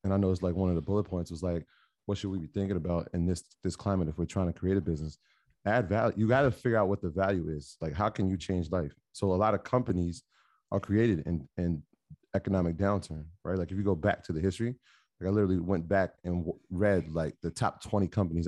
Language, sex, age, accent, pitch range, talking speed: English, male, 30-49, American, 85-105 Hz, 250 wpm